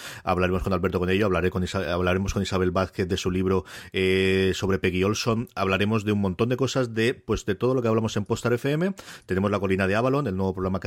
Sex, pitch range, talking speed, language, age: male, 95-115 Hz, 245 wpm, English, 40-59